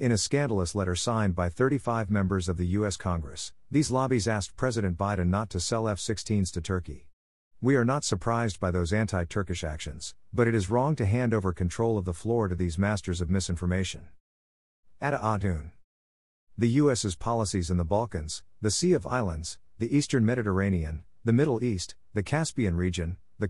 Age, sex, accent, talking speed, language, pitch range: 50-69, male, American, 175 wpm, English, 90-115 Hz